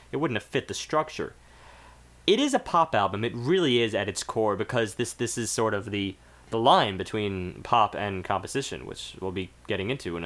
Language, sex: English, male